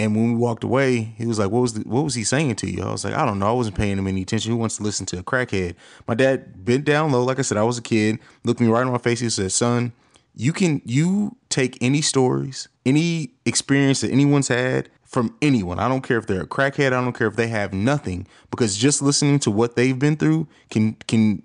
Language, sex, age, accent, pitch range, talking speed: English, male, 30-49, American, 110-140 Hz, 265 wpm